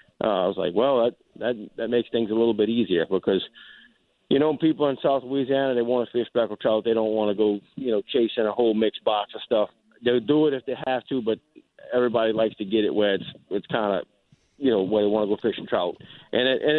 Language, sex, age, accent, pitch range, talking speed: English, male, 40-59, American, 115-135 Hz, 255 wpm